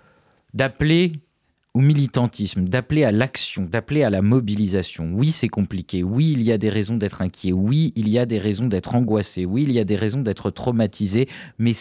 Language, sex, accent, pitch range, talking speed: French, male, French, 105-130 Hz, 195 wpm